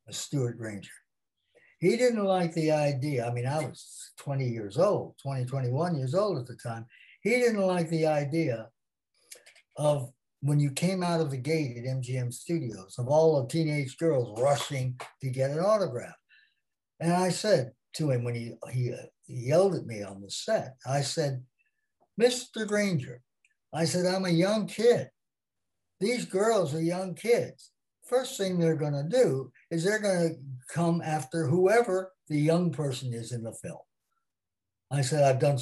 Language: English